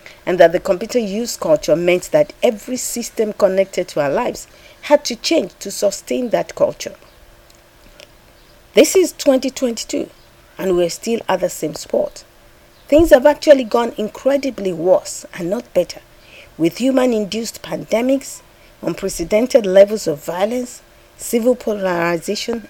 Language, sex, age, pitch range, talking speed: English, female, 50-69, 195-280 Hz, 130 wpm